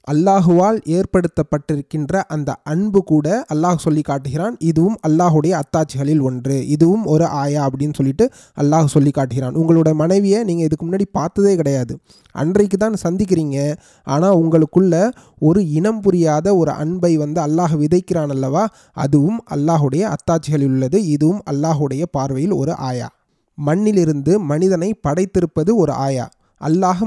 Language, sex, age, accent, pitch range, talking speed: Tamil, male, 30-49, native, 150-185 Hz, 120 wpm